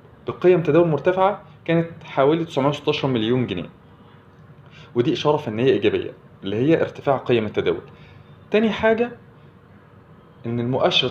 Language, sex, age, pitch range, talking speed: Arabic, male, 20-39, 125-165 Hz, 115 wpm